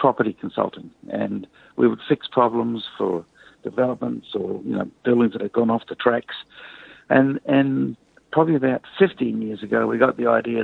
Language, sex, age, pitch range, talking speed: English, male, 60-79, 115-135 Hz, 170 wpm